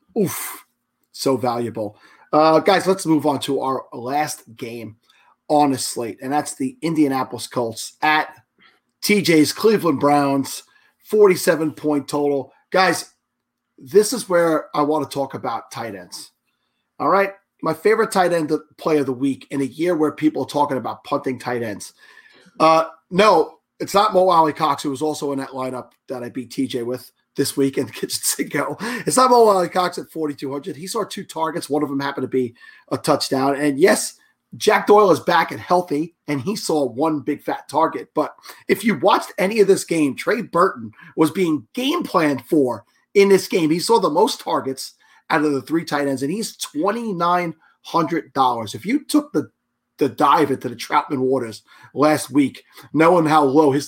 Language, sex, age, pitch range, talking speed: English, male, 30-49, 135-180 Hz, 180 wpm